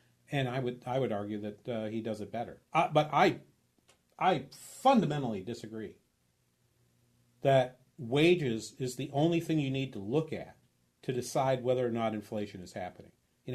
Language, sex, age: English, male, 40-59